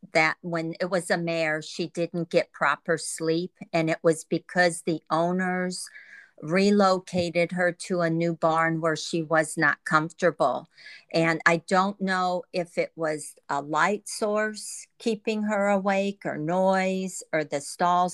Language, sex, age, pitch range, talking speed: English, female, 50-69, 160-185 Hz, 150 wpm